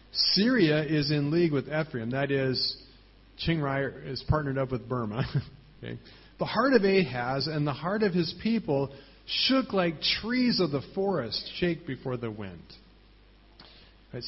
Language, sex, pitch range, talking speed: English, male, 125-170 Hz, 150 wpm